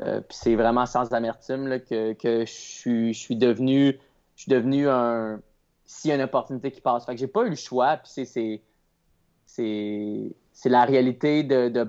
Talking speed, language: 175 wpm, French